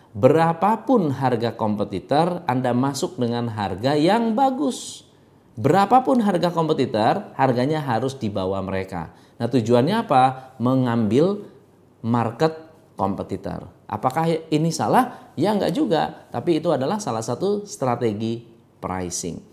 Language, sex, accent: Indonesian, male, native